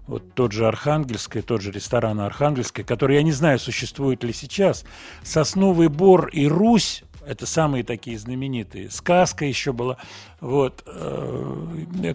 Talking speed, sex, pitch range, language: 135 wpm, male, 115-155 Hz, Russian